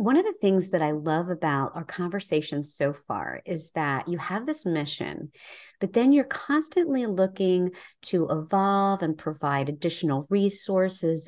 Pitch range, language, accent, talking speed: 155-205 Hz, English, American, 155 wpm